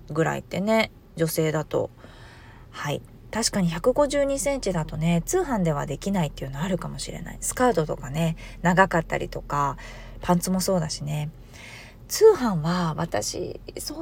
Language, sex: Japanese, female